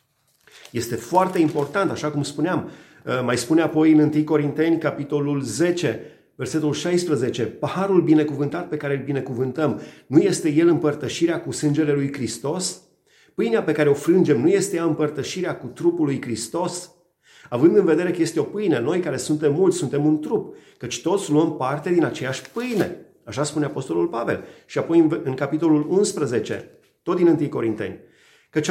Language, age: Romanian, 30-49